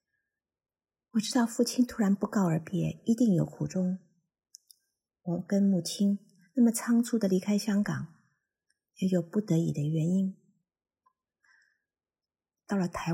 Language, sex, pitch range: Chinese, female, 175-210 Hz